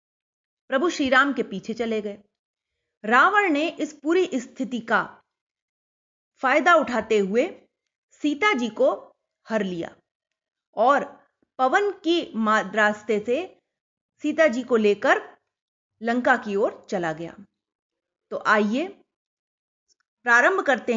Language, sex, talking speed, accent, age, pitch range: Hindi, female, 110 wpm, native, 30-49, 245-320 Hz